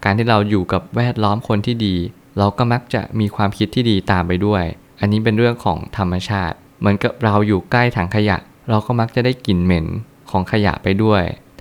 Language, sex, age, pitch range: Thai, male, 20-39, 95-115 Hz